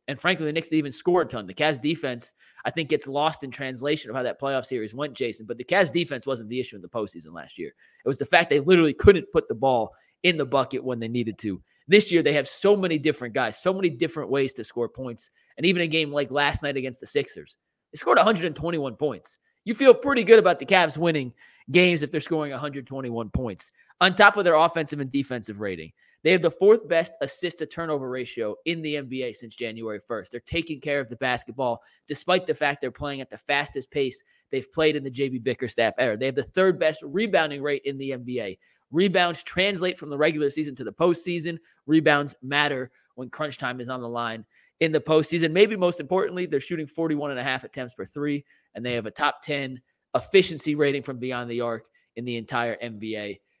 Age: 30-49